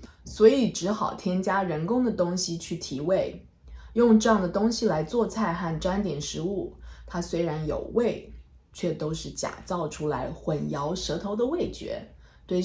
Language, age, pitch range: Chinese, 20-39, 145-205 Hz